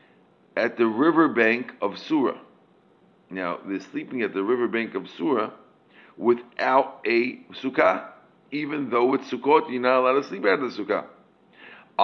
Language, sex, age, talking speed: English, male, 50-69, 140 wpm